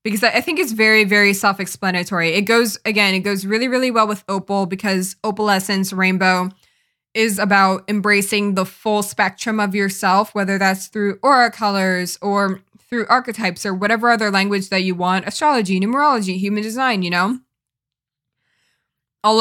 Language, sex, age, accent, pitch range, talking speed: English, female, 20-39, American, 190-215 Hz, 155 wpm